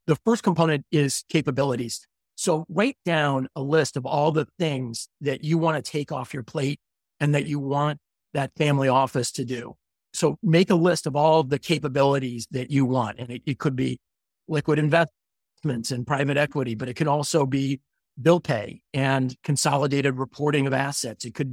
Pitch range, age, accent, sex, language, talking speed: 135-165 Hz, 50-69, American, male, English, 185 wpm